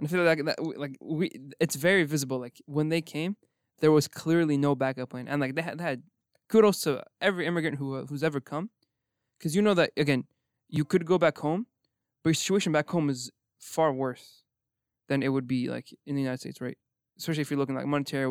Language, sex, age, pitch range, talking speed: English, male, 20-39, 130-160 Hz, 225 wpm